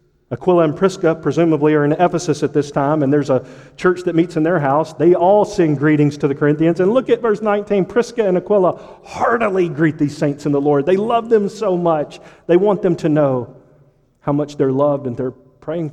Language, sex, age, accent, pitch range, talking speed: English, male, 40-59, American, 130-175 Hz, 220 wpm